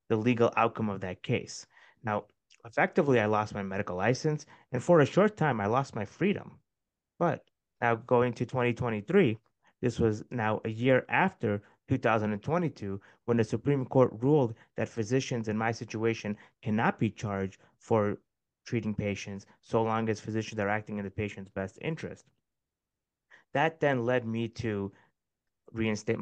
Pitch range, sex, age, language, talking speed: 105-130 Hz, male, 30-49, English, 155 wpm